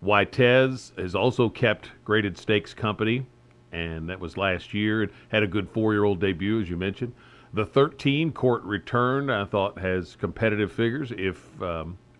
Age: 50-69